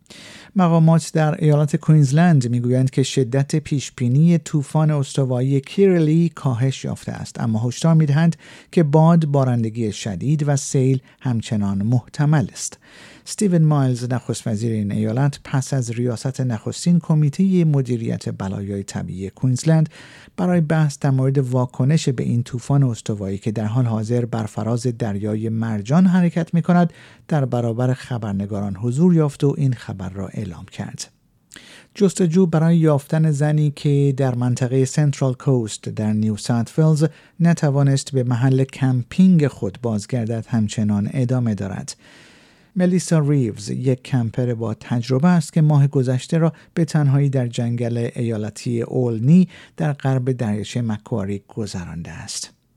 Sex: male